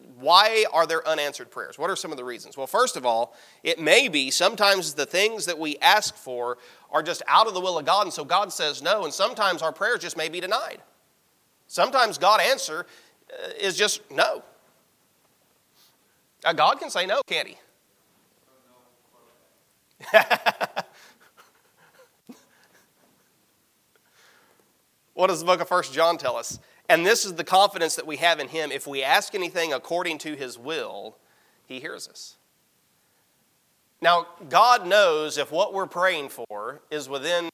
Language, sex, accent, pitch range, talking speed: English, male, American, 150-190 Hz, 155 wpm